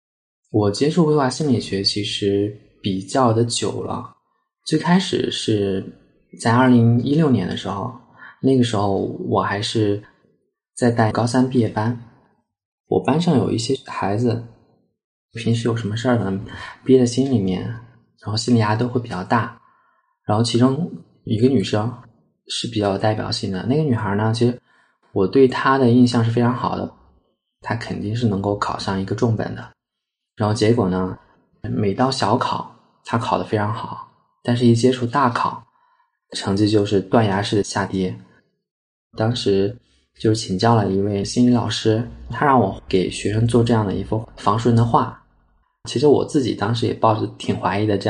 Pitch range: 100-125 Hz